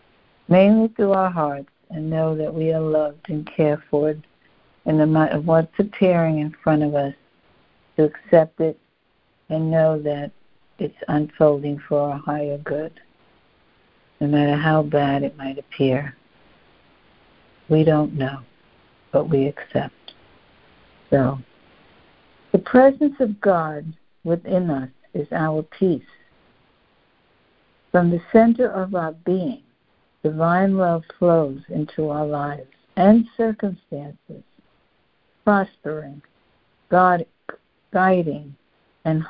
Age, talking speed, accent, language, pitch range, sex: 60-79, 115 wpm, American, English, 145-175 Hz, female